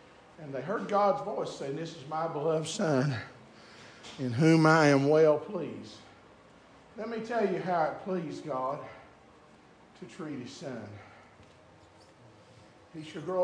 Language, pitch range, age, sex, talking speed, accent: English, 145-235 Hz, 50-69, male, 145 wpm, American